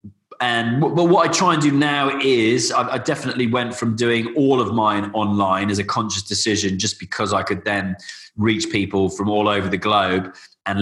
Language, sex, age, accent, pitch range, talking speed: English, male, 20-39, British, 95-110 Hz, 190 wpm